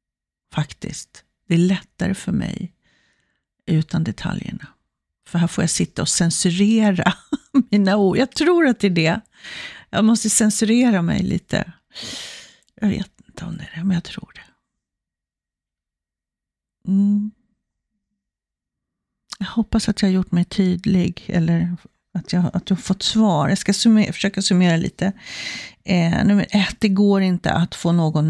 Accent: native